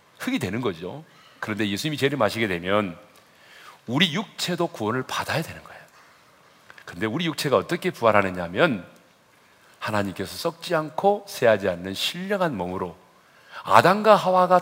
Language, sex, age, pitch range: Korean, male, 40-59, 105-175 Hz